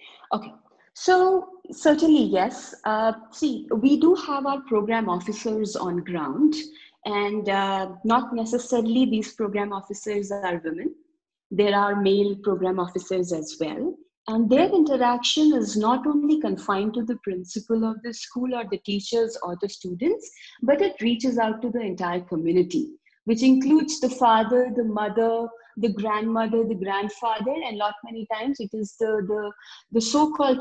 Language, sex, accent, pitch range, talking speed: English, female, Indian, 205-275 Hz, 150 wpm